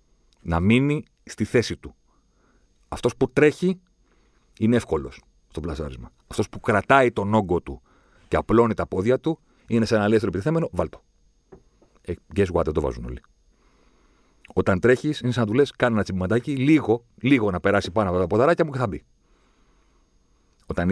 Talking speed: 165 wpm